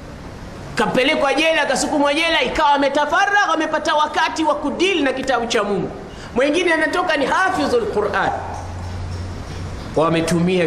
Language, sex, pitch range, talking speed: Swahili, male, 170-260 Hz, 130 wpm